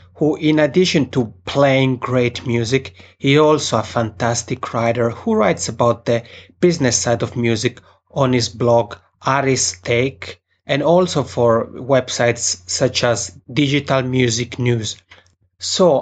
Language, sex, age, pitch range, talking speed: English, male, 30-49, 115-140 Hz, 130 wpm